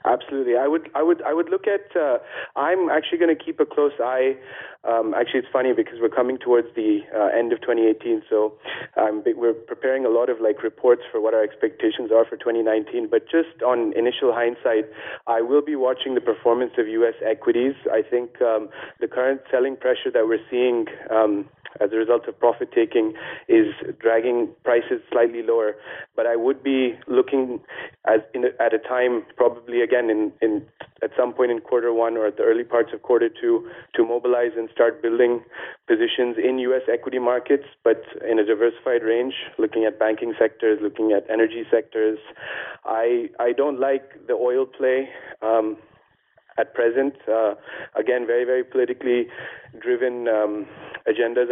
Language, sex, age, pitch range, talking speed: English, male, 30-49, 115-175 Hz, 190 wpm